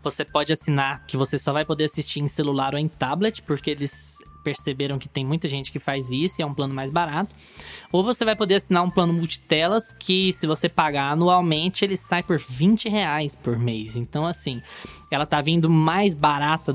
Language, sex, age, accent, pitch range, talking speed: Portuguese, male, 10-29, Brazilian, 140-185 Hz, 205 wpm